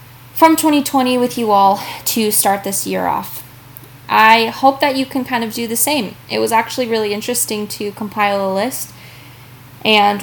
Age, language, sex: 10-29, English, female